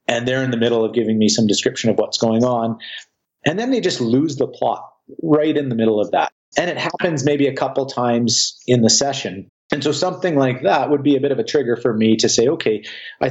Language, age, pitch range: English, 40-59, 115-140 Hz